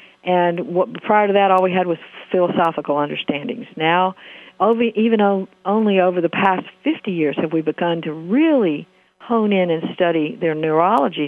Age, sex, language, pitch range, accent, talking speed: 50-69, female, English, 170-220 Hz, American, 155 wpm